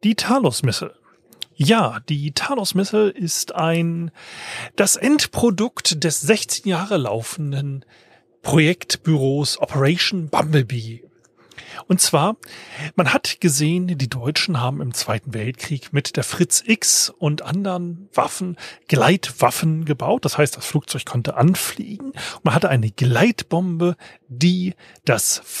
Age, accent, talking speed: 30-49, German, 115 wpm